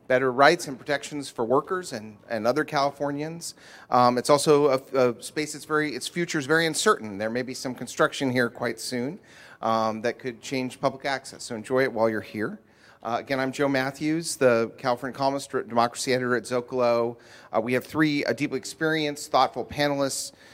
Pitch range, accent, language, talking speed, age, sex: 120-145 Hz, American, English, 185 wpm, 40-59, male